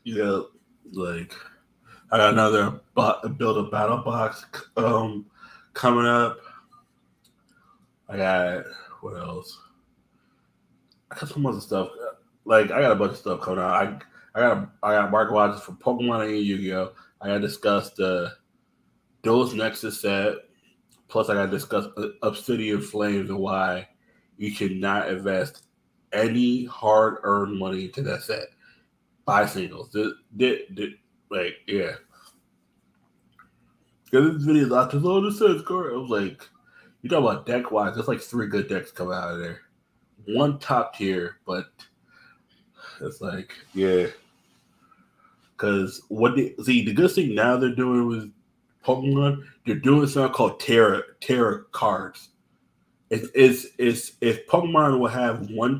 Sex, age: male, 20-39